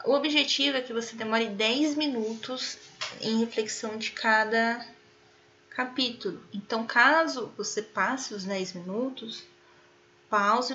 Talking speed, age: 115 wpm, 10-29